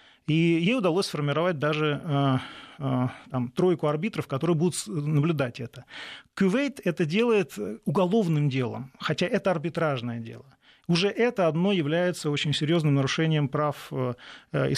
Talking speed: 120 wpm